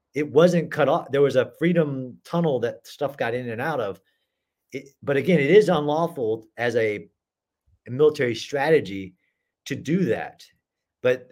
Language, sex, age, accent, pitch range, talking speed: English, male, 40-59, American, 130-165 Hz, 165 wpm